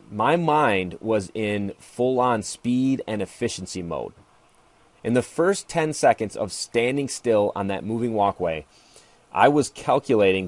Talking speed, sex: 140 wpm, male